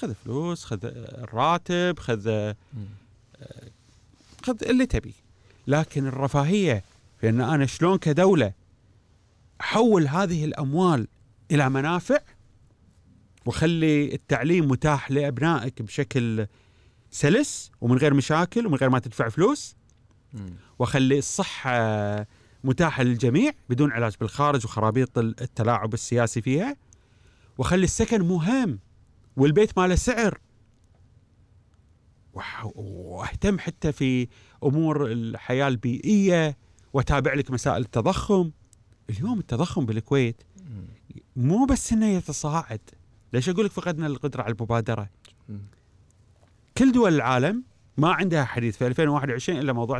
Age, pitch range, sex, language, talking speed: 30-49, 110-150 Hz, male, Arabic, 100 wpm